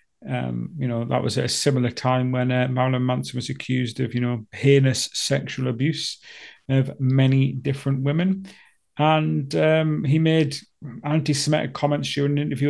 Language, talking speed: English, 155 wpm